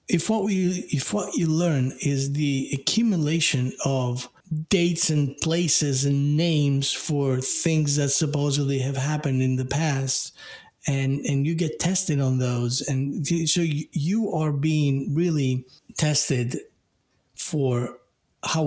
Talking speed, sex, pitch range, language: 125 wpm, male, 135-165 Hz, English